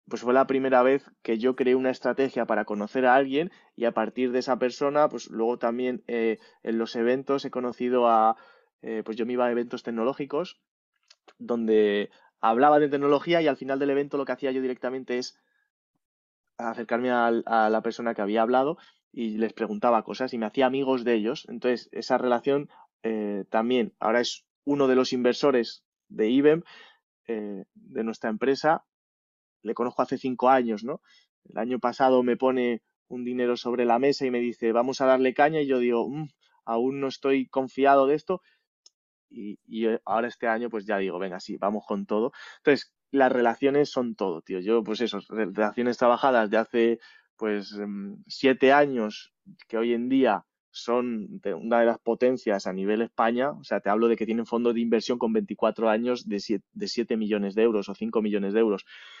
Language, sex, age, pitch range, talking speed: Spanish, male, 20-39, 110-130 Hz, 190 wpm